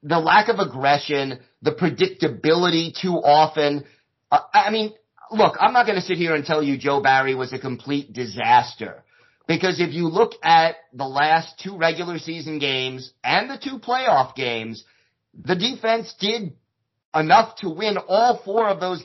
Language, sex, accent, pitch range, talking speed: English, male, American, 135-185 Hz, 165 wpm